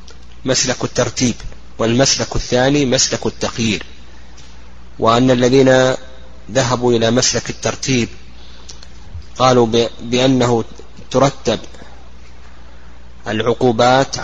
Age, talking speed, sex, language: 30-49, 65 wpm, male, Arabic